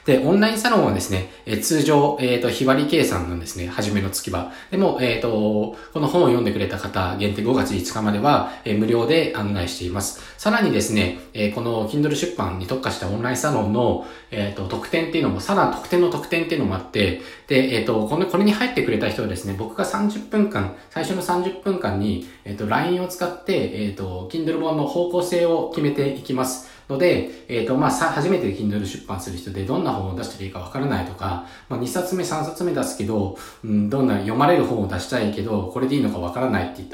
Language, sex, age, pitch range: Japanese, male, 20-39, 95-140 Hz